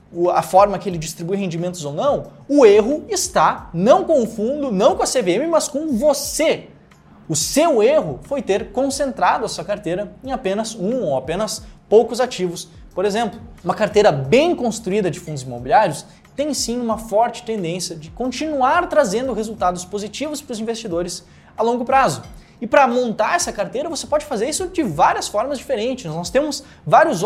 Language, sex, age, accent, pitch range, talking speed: Portuguese, male, 20-39, Brazilian, 190-270 Hz, 175 wpm